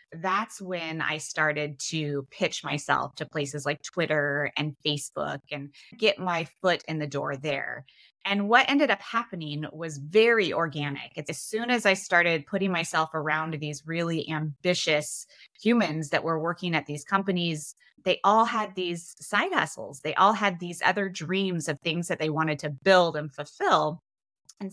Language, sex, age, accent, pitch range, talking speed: English, female, 20-39, American, 150-190 Hz, 165 wpm